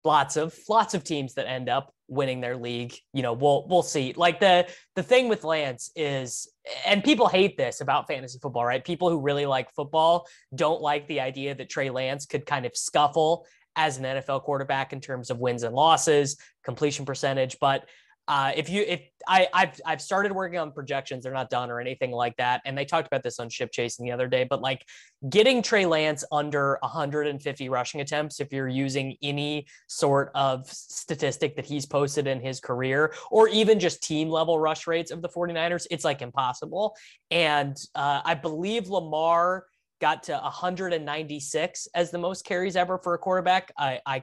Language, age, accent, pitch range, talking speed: English, 20-39, American, 130-175 Hz, 195 wpm